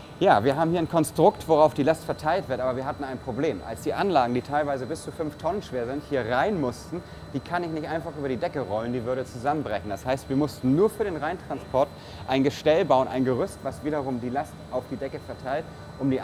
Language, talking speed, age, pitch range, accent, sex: German, 240 wpm, 30-49, 120-150 Hz, German, male